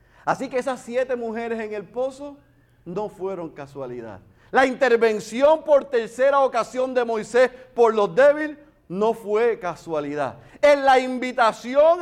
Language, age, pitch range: Spanish, 40-59, 240-310 Hz